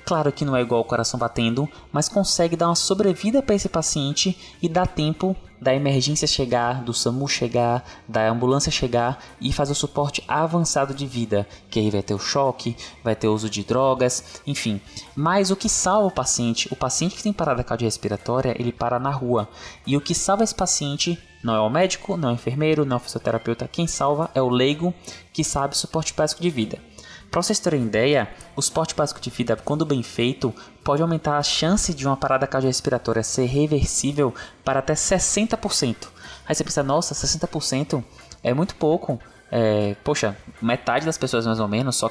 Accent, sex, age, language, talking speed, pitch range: Brazilian, male, 20-39, Portuguese, 195 wpm, 120-160 Hz